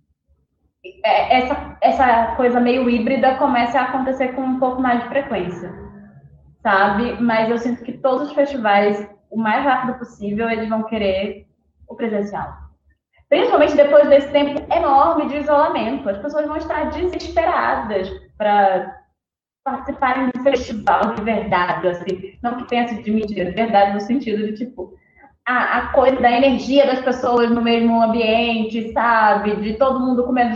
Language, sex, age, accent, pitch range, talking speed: Portuguese, female, 20-39, Brazilian, 205-270 Hz, 145 wpm